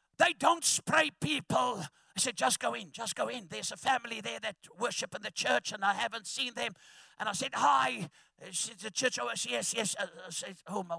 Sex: male